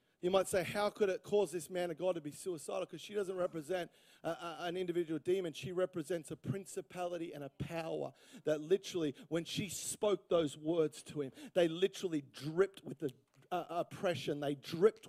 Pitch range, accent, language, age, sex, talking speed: 165-215 Hz, Australian, English, 40-59, male, 180 wpm